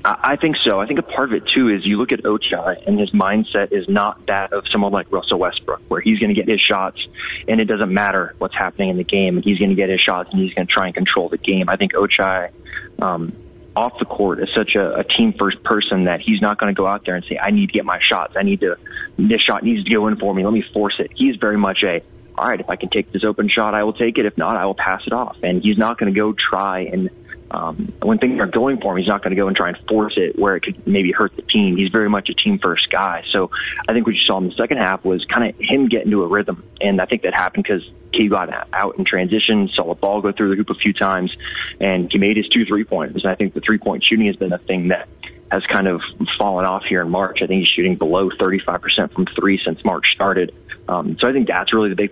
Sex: male